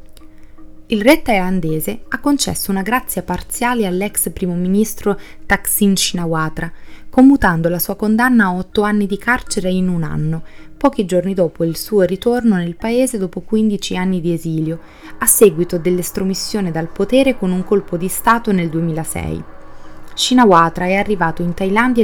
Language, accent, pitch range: Italian, native, 170-220 Hz